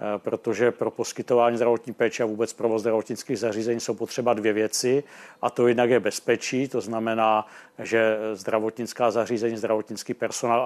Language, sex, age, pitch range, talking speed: Czech, male, 50-69, 115-125 Hz, 145 wpm